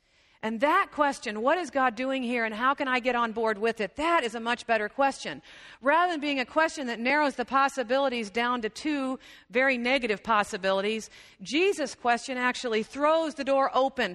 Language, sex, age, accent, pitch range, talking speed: English, female, 50-69, American, 200-265 Hz, 190 wpm